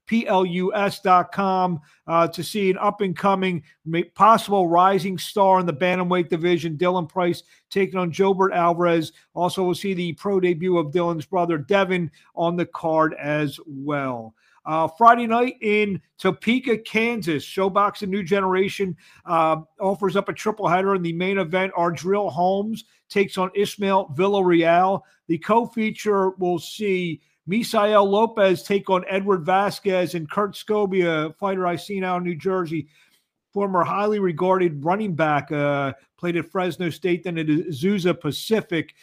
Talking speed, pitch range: 150 wpm, 170-200 Hz